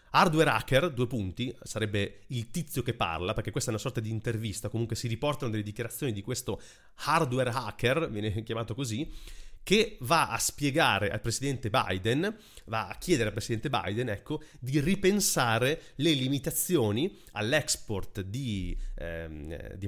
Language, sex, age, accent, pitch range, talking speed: Italian, male, 30-49, native, 105-130 Hz, 150 wpm